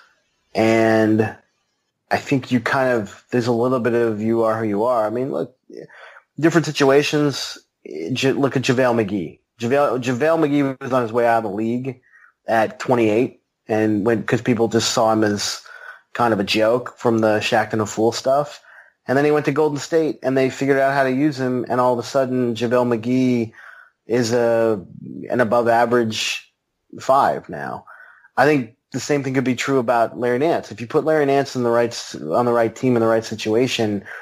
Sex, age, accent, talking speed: male, 30-49, American, 200 wpm